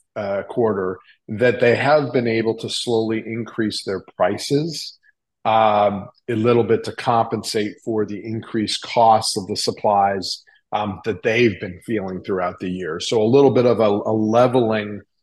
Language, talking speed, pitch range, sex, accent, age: English, 160 wpm, 100-120 Hz, male, American, 40-59